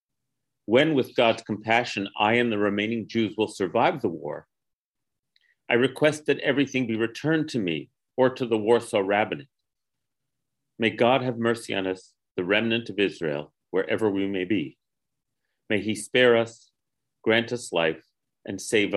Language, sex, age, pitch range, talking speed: English, male, 40-59, 100-130 Hz, 155 wpm